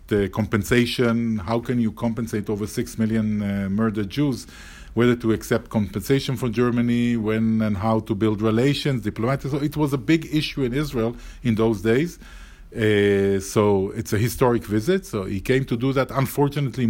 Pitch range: 105-125 Hz